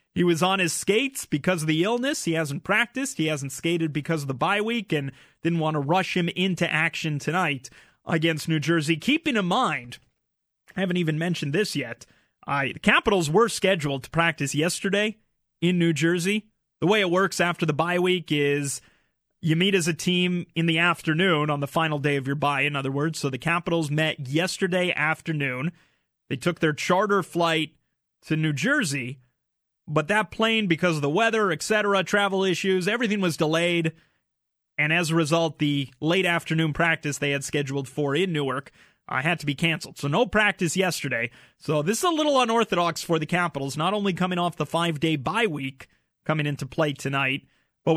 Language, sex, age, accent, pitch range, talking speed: English, male, 30-49, American, 150-185 Hz, 190 wpm